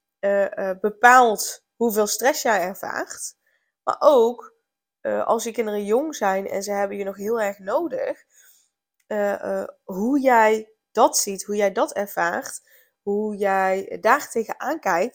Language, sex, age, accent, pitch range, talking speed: Dutch, female, 10-29, Dutch, 200-260 Hz, 145 wpm